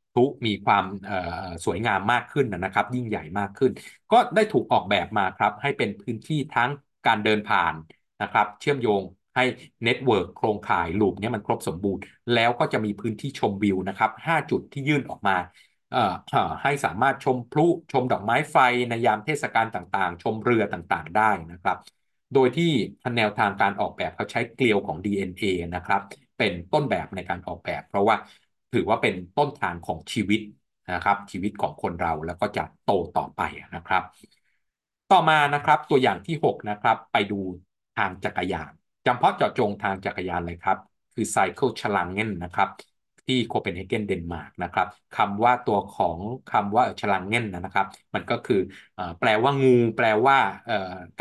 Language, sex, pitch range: Thai, male, 95-125 Hz